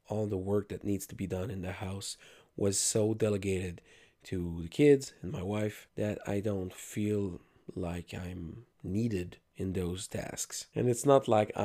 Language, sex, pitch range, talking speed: English, male, 95-120 Hz, 175 wpm